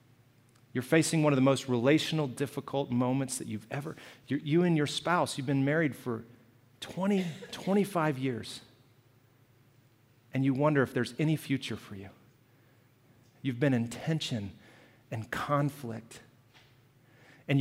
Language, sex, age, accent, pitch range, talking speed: English, male, 40-59, American, 120-145 Hz, 135 wpm